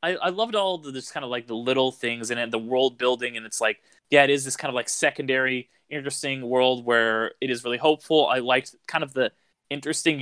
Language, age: English, 20-39